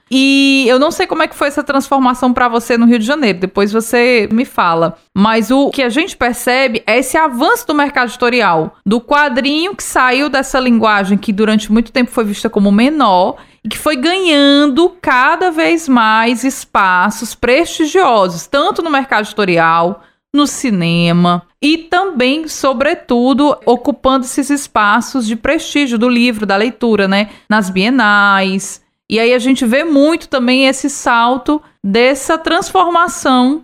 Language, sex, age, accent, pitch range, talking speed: Portuguese, female, 20-39, Brazilian, 215-290 Hz, 155 wpm